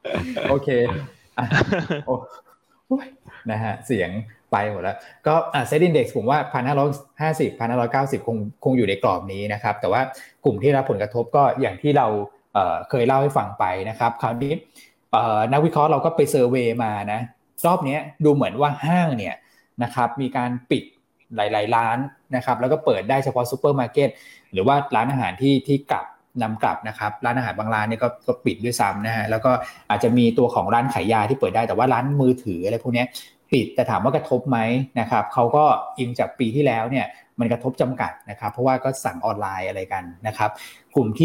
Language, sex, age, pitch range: Thai, male, 20-39, 115-140 Hz